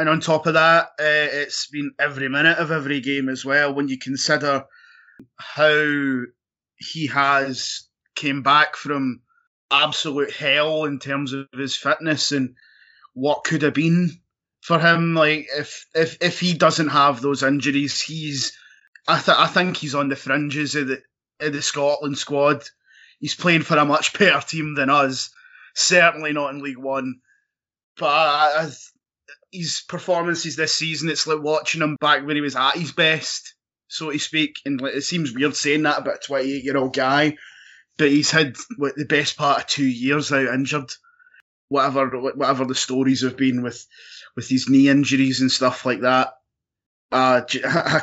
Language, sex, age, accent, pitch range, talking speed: English, male, 20-39, British, 135-155 Hz, 170 wpm